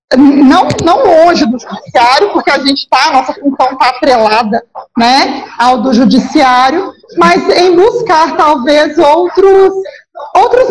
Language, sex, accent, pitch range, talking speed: Portuguese, female, Brazilian, 260-330 Hz, 135 wpm